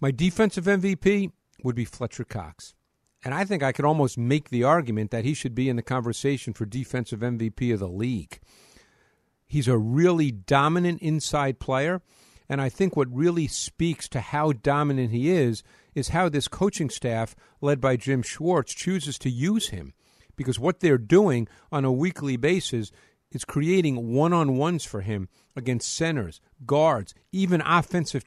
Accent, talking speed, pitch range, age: American, 165 wpm, 125-165 Hz, 50-69